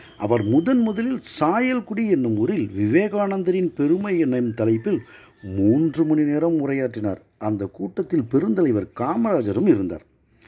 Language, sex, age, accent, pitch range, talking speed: Tamil, male, 50-69, native, 115-175 Hz, 110 wpm